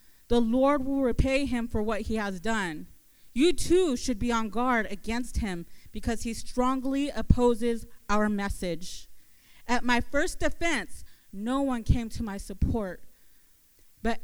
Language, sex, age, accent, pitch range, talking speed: English, female, 30-49, American, 200-255 Hz, 150 wpm